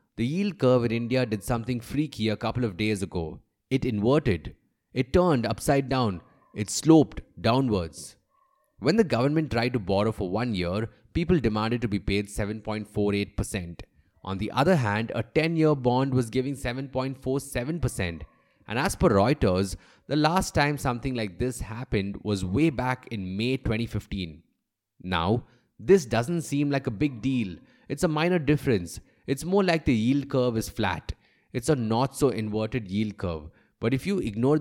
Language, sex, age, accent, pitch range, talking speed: English, male, 30-49, Indian, 105-140 Hz, 165 wpm